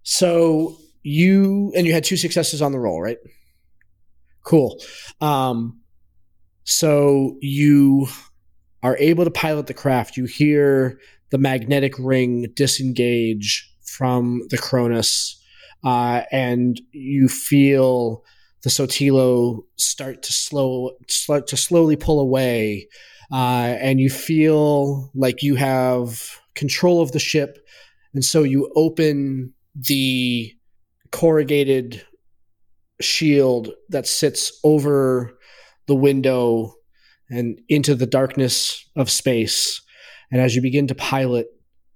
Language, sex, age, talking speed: English, male, 20-39, 110 wpm